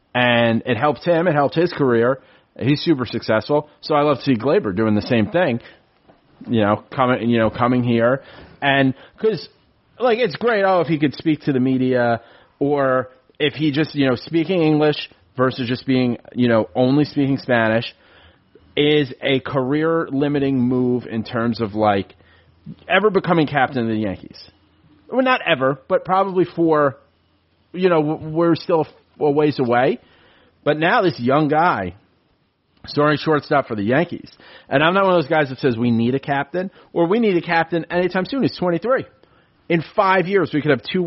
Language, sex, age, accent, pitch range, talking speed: English, male, 30-49, American, 120-160 Hz, 180 wpm